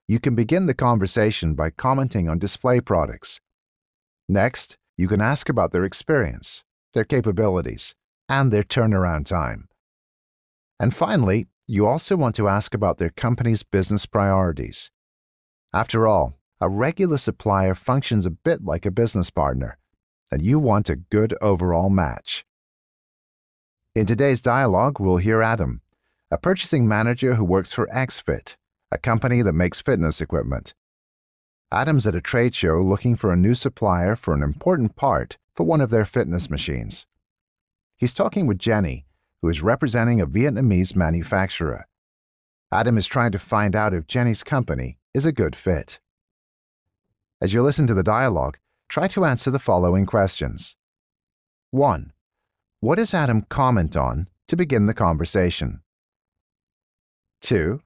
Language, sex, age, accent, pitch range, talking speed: English, male, 50-69, American, 85-120 Hz, 145 wpm